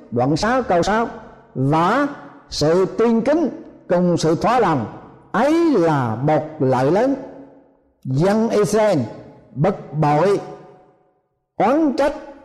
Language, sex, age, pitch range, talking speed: Vietnamese, male, 60-79, 150-225 Hz, 110 wpm